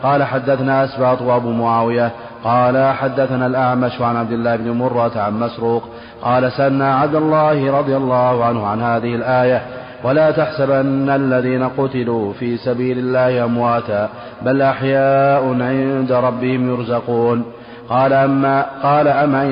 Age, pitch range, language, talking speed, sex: 30-49, 120-140 Hz, Arabic, 130 wpm, male